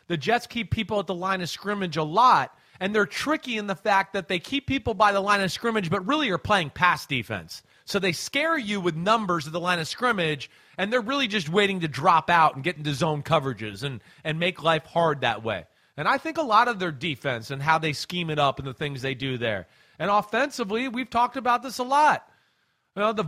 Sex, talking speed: male, 235 wpm